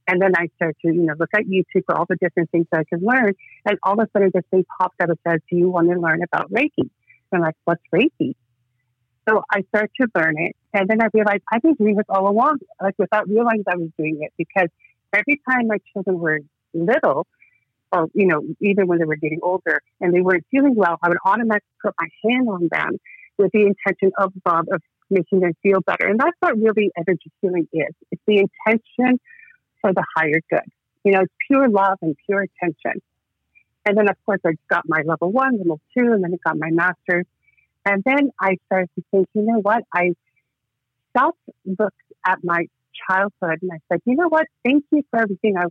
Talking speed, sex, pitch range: 220 wpm, female, 170-215 Hz